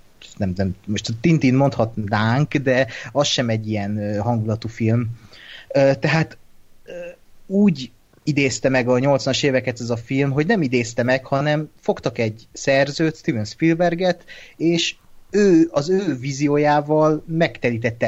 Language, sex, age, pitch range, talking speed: Hungarian, male, 30-49, 115-155 Hz, 130 wpm